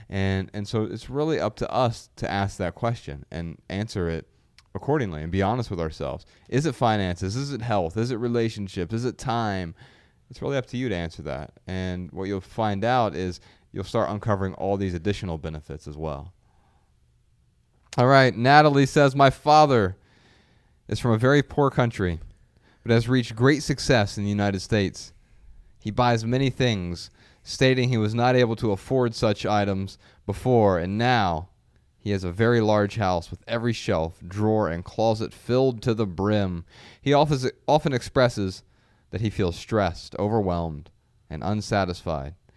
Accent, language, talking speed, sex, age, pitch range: American, English, 170 wpm, male, 30-49, 90-120 Hz